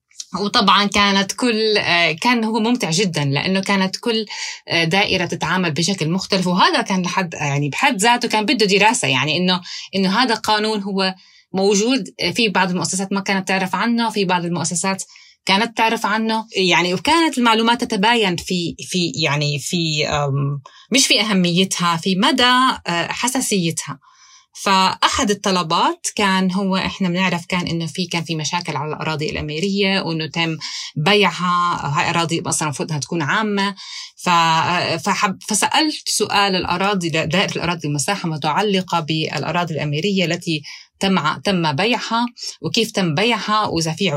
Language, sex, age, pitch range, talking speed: Arabic, female, 20-39, 165-210 Hz, 135 wpm